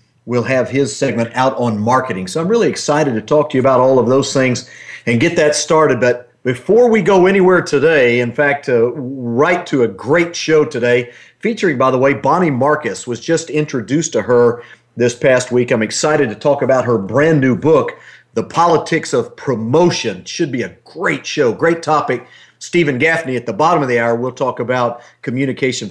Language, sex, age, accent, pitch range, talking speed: English, male, 50-69, American, 125-165 Hz, 200 wpm